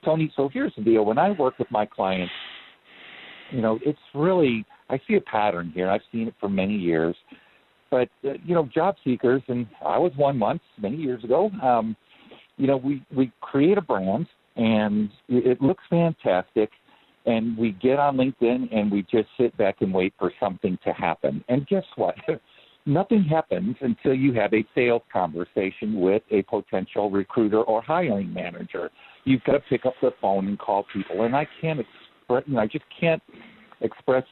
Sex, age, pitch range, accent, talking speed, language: male, 50-69, 105-140 Hz, American, 180 wpm, English